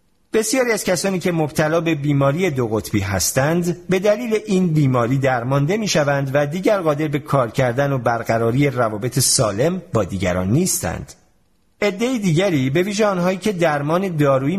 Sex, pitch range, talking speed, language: male, 115-165 Hz, 150 wpm, Persian